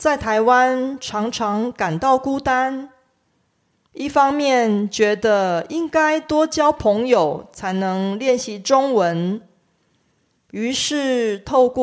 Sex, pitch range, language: female, 205-275 Hz, Korean